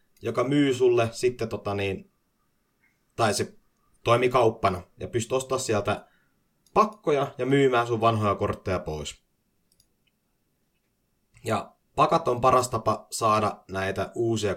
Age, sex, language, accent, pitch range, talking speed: 30-49, male, Finnish, native, 100-135 Hz, 115 wpm